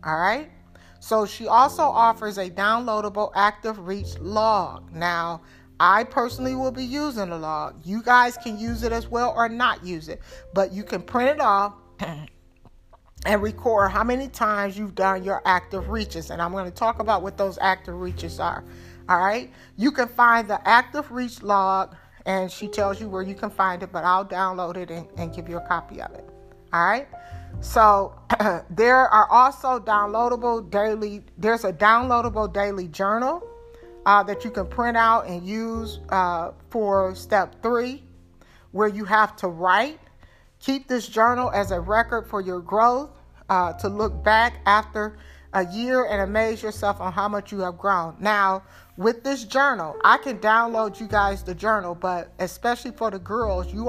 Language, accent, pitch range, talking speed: English, American, 185-230 Hz, 180 wpm